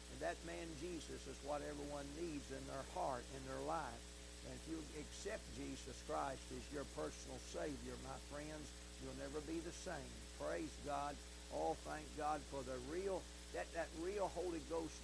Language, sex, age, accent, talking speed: English, male, 60-79, American, 180 wpm